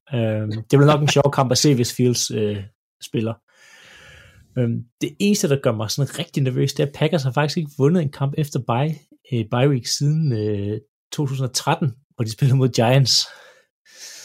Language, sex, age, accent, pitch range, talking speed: Danish, male, 30-49, native, 115-150 Hz, 185 wpm